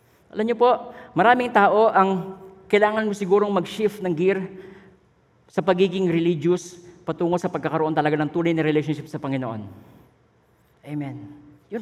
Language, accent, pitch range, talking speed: Filipino, native, 170-225 Hz, 135 wpm